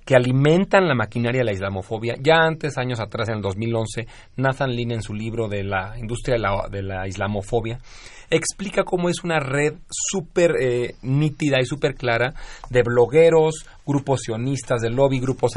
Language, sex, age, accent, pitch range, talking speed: Spanish, male, 40-59, Mexican, 110-140 Hz, 175 wpm